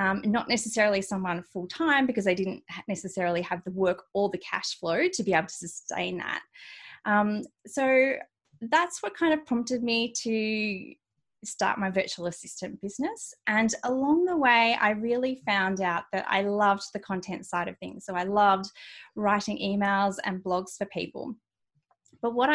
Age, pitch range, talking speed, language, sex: 20-39, 185-230 Hz, 170 wpm, English, female